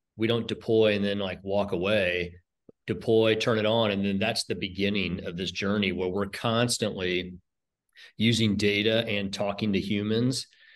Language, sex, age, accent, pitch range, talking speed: English, male, 40-59, American, 100-120 Hz, 160 wpm